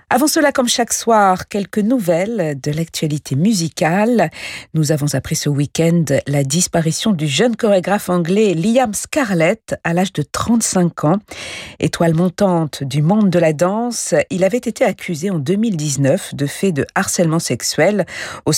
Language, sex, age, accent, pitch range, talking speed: French, female, 50-69, French, 150-215 Hz, 150 wpm